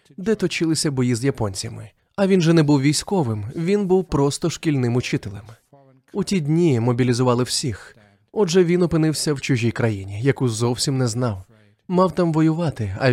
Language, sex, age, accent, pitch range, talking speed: Ukrainian, male, 20-39, native, 120-160 Hz, 160 wpm